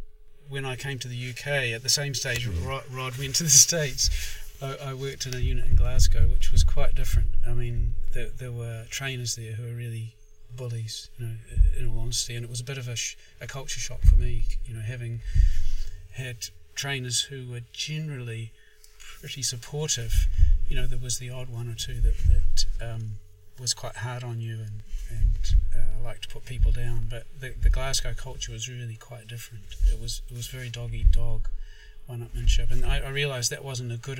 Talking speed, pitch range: 200 wpm, 110-130 Hz